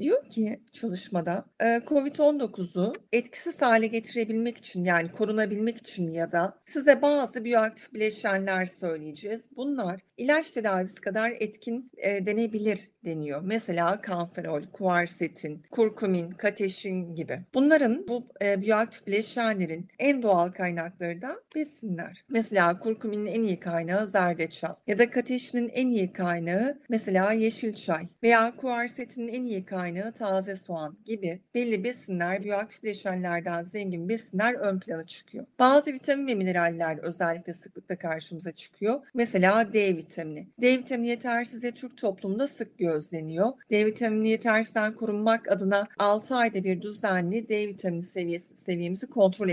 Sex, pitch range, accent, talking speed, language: female, 180-235 Hz, native, 125 wpm, Turkish